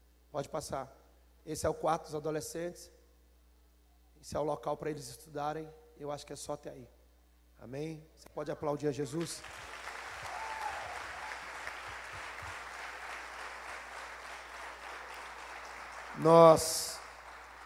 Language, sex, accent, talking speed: Portuguese, male, Brazilian, 100 wpm